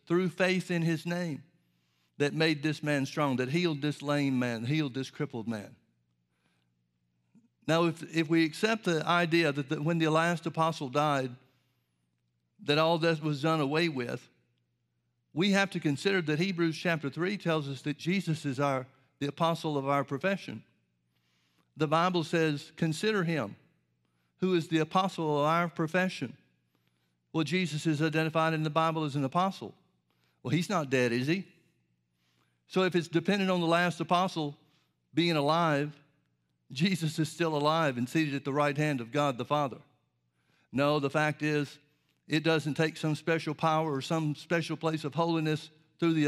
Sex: male